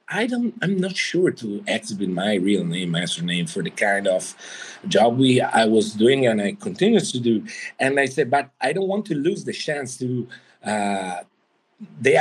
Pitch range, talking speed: 115-170 Hz, 195 wpm